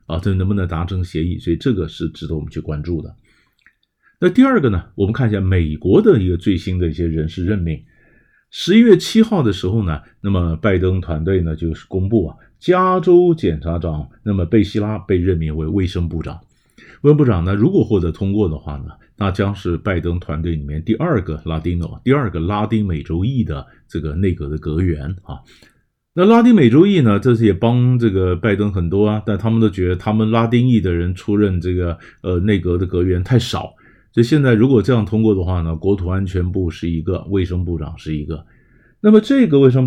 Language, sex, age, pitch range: Chinese, male, 50-69, 85-120 Hz